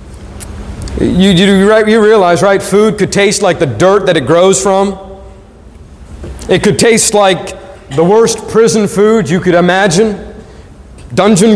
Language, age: English, 40-59